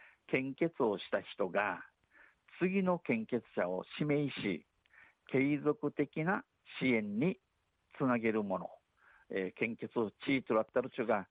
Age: 50-69